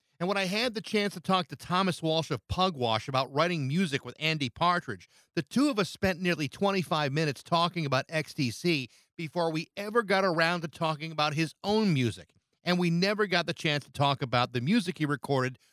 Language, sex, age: English, male, 50-69